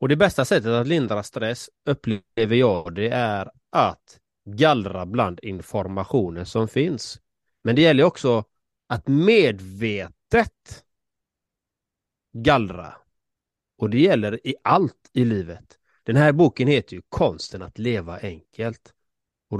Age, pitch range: 30-49, 105-140 Hz